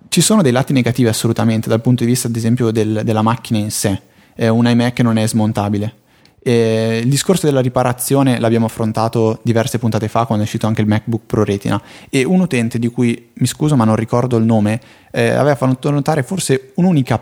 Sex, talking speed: male, 200 wpm